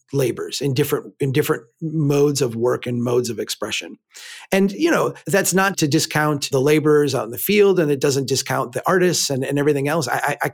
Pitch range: 130-160 Hz